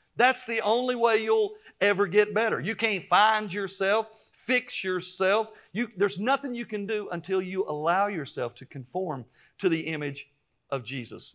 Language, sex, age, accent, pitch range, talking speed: English, male, 50-69, American, 140-200 Hz, 165 wpm